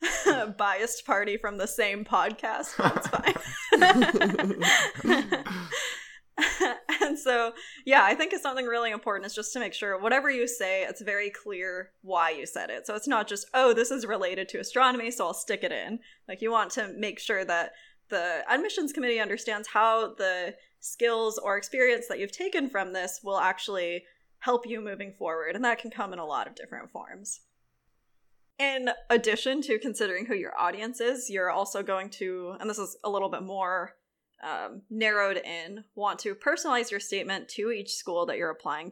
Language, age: English, 20-39